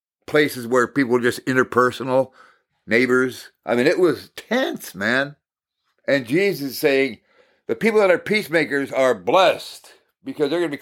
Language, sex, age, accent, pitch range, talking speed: English, male, 60-79, American, 120-155 Hz, 160 wpm